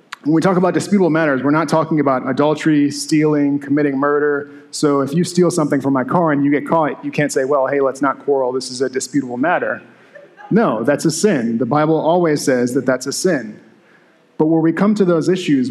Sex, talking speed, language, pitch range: male, 220 wpm, English, 130-165 Hz